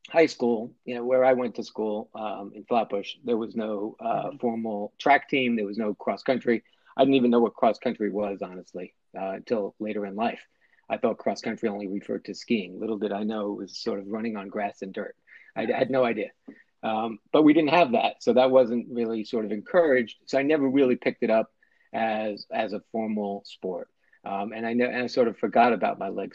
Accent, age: American, 40-59